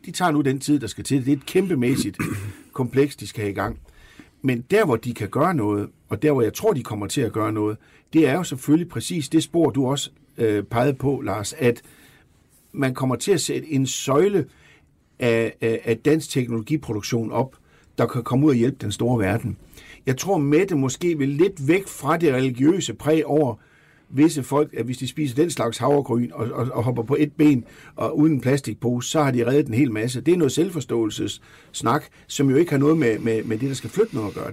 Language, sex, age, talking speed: Danish, male, 60-79, 220 wpm